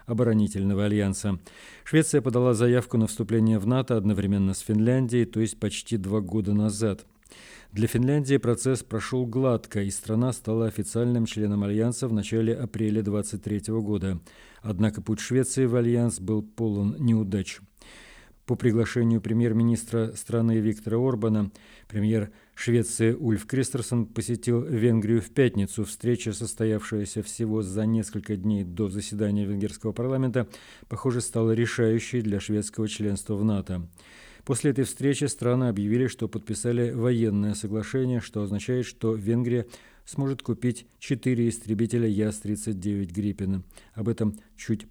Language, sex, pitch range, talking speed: Russian, male, 105-125 Hz, 130 wpm